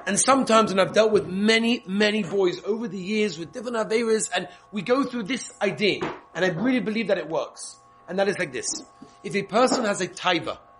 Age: 30-49